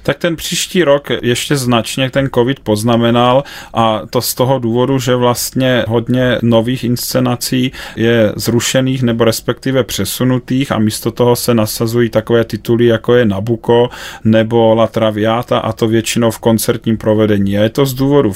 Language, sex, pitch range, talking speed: Czech, male, 105-115 Hz, 155 wpm